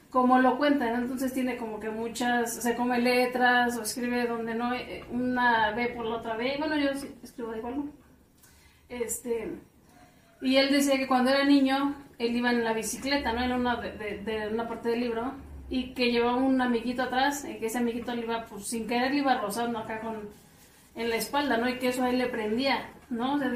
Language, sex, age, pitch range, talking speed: Spanish, female, 30-49, 230-270 Hz, 220 wpm